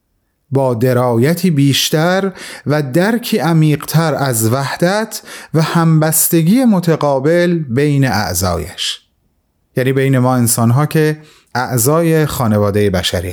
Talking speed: 95 wpm